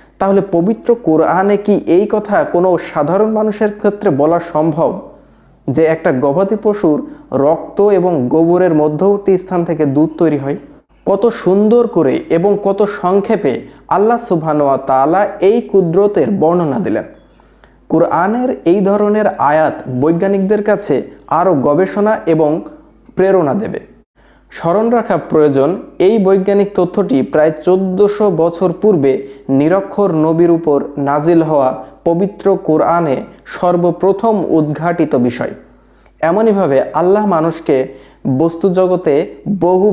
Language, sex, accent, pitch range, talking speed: Bengali, male, native, 155-200 Hz, 110 wpm